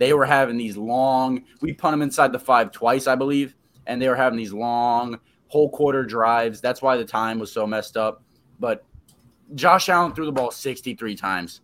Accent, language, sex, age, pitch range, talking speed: American, English, male, 20-39, 115-140 Hz, 205 wpm